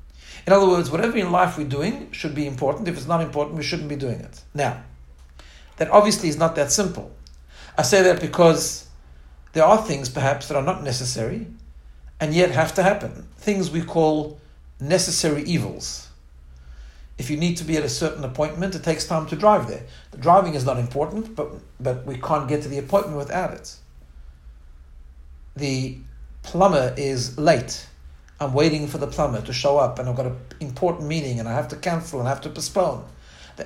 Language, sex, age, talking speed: English, male, 60-79, 195 wpm